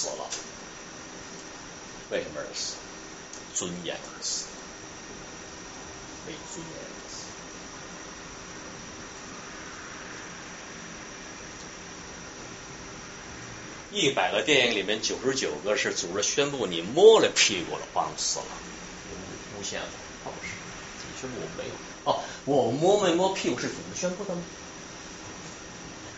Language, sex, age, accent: Chinese, male, 50-69, native